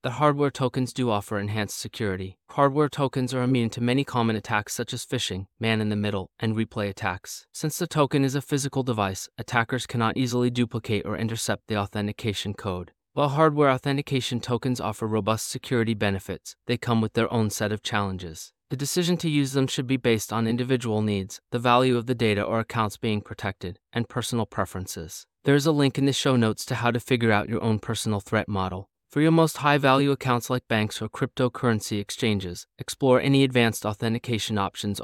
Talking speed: 190 wpm